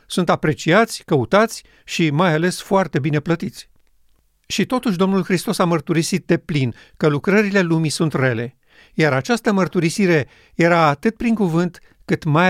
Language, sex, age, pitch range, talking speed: Romanian, male, 50-69, 150-190 Hz, 150 wpm